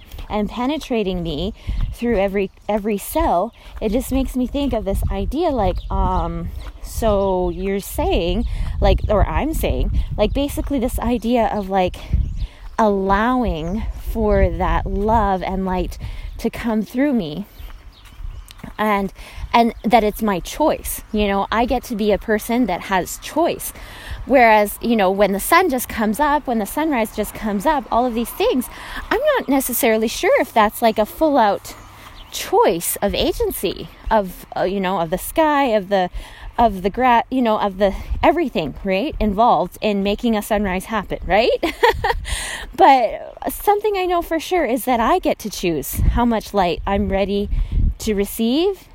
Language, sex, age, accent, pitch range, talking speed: English, female, 20-39, American, 200-260 Hz, 160 wpm